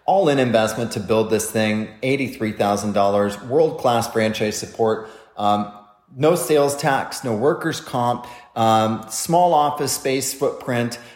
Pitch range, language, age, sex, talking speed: 110-140 Hz, English, 30-49, male, 120 wpm